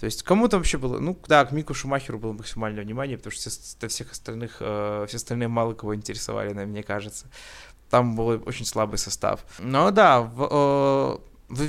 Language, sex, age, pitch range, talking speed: Russian, male, 20-39, 110-140 Hz, 185 wpm